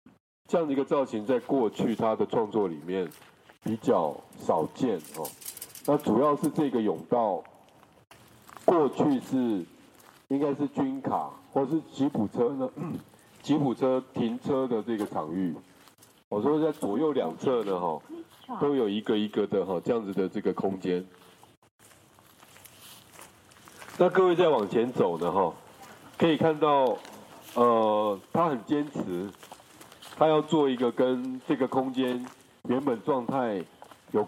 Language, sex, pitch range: Chinese, male, 105-150 Hz